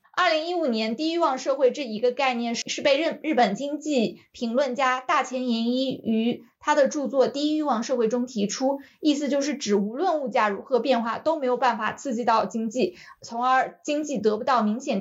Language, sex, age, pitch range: Chinese, female, 20-39, 220-270 Hz